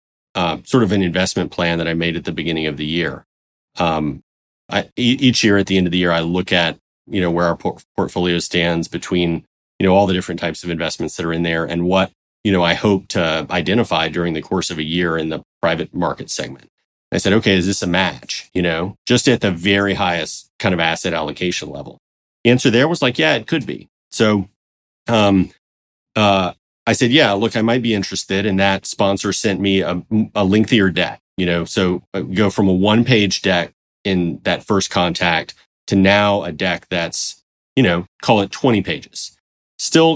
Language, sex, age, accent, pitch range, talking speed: English, male, 30-49, American, 85-105 Hz, 205 wpm